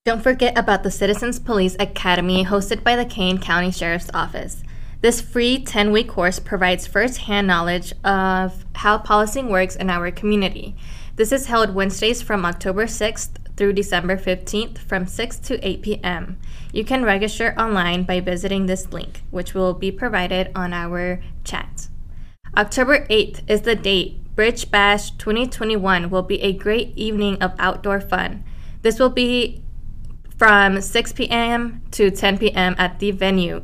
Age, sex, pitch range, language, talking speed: 10-29, female, 185-220 Hz, English, 155 wpm